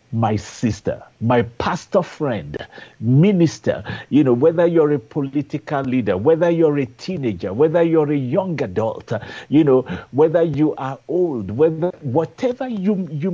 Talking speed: 145 wpm